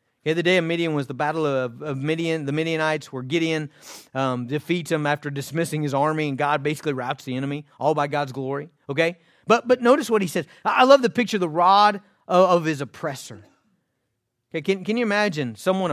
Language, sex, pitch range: English, male, 130-200 Hz